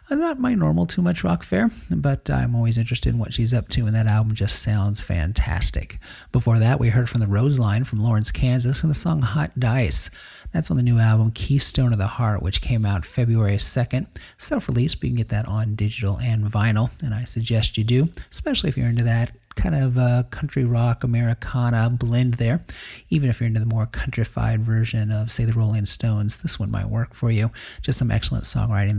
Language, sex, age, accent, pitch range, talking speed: English, male, 40-59, American, 110-135 Hz, 215 wpm